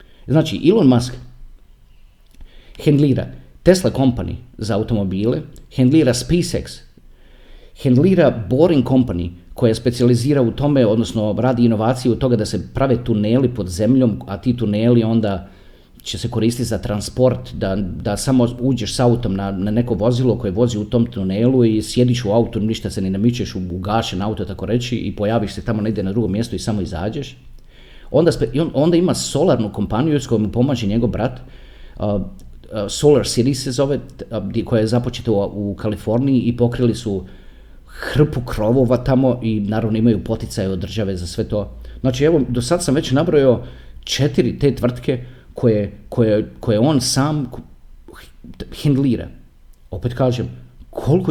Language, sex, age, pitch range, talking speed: Croatian, male, 40-59, 100-125 Hz, 160 wpm